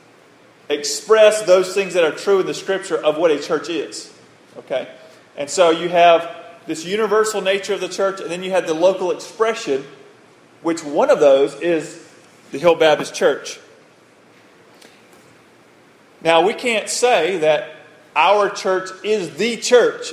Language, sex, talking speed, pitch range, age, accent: English, male, 150 wpm, 150-210 Hz, 40-59, American